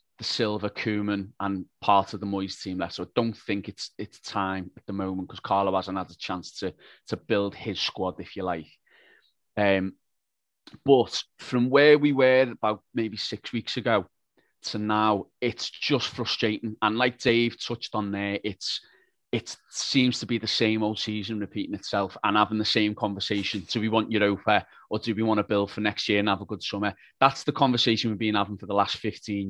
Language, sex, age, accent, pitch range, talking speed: English, male, 30-49, British, 105-125 Hz, 205 wpm